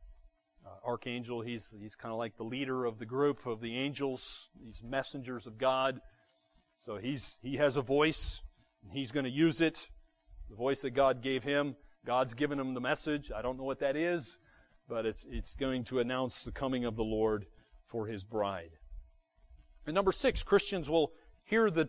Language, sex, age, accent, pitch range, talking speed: English, male, 40-59, American, 115-150 Hz, 190 wpm